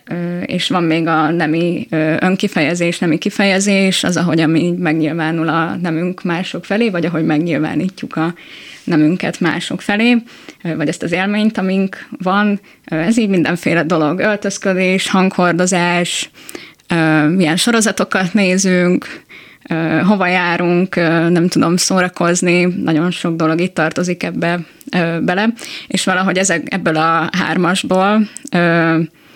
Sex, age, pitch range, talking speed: female, 20-39, 165-195 Hz, 110 wpm